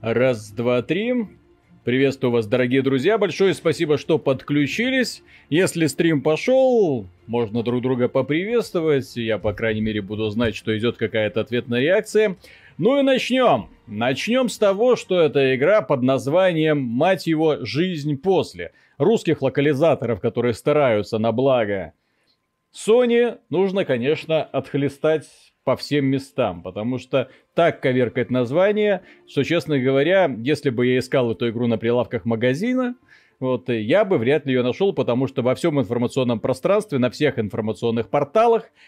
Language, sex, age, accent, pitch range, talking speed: Russian, male, 30-49, native, 120-165 Hz, 140 wpm